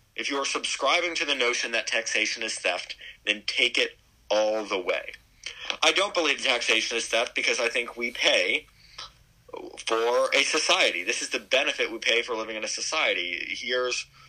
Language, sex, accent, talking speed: English, male, American, 180 wpm